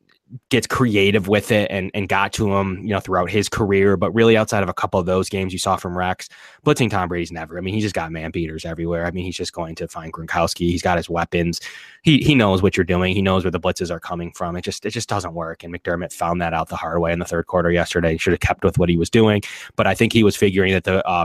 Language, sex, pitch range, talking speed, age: English, male, 85-105 Hz, 290 wpm, 20-39